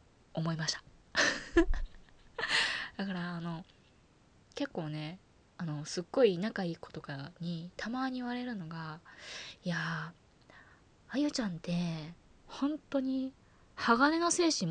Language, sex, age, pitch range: Japanese, female, 20-39, 170-275 Hz